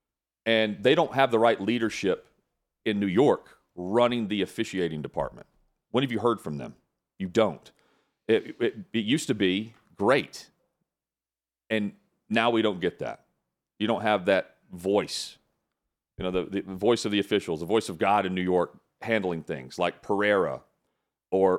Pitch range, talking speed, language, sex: 90-110 Hz, 165 wpm, English, male